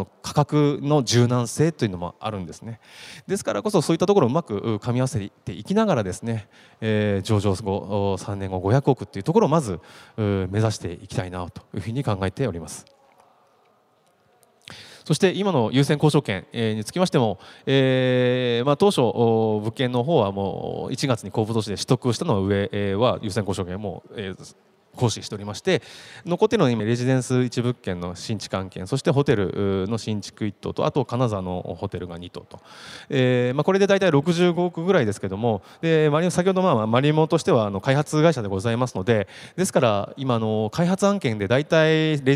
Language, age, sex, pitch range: Japanese, 20-39, male, 105-150 Hz